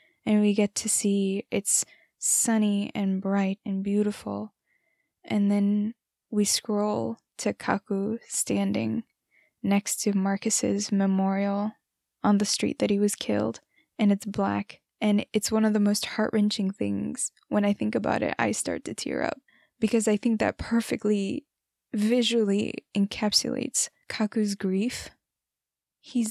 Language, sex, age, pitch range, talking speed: English, female, 10-29, 205-245 Hz, 135 wpm